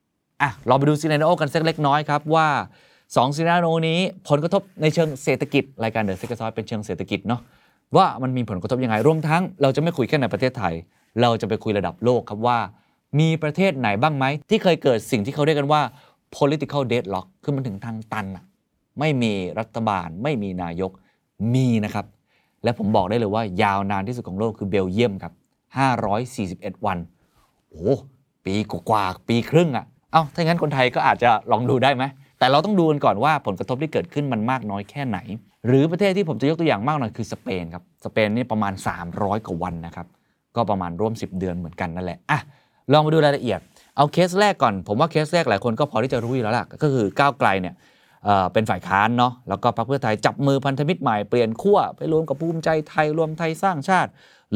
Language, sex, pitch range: Thai, male, 105-150 Hz